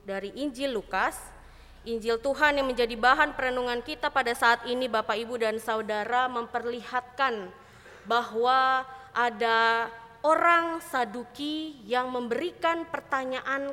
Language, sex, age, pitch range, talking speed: Indonesian, female, 20-39, 230-280 Hz, 110 wpm